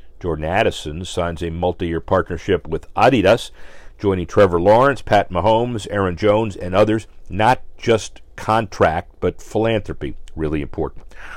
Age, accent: 50-69, American